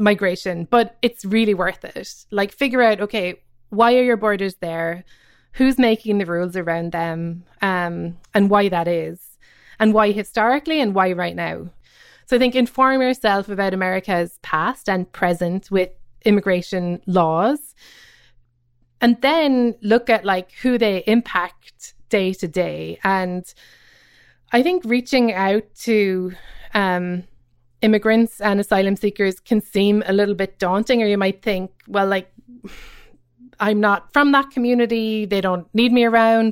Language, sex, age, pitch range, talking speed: English, female, 20-39, 180-225 Hz, 150 wpm